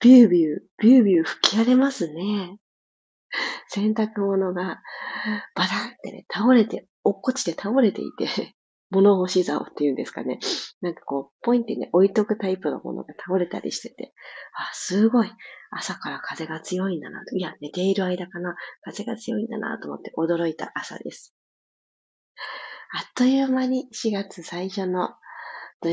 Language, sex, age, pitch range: Japanese, female, 40-59, 175-240 Hz